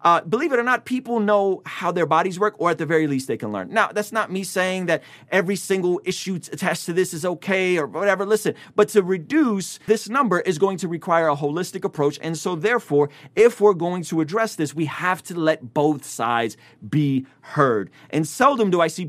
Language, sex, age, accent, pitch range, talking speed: English, male, 30-49, American, 145-195 Hz, 220 wpm